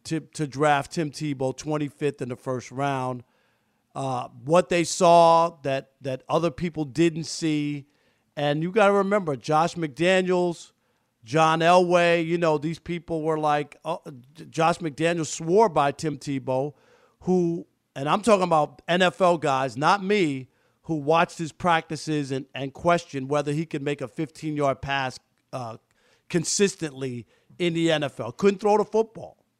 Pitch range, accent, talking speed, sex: 140-175 Hz, American, 150 wpm, male